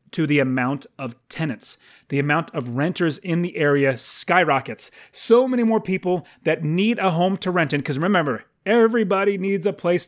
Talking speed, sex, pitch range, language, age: 180 wpm, male, 135-185 Hz, English, 30-49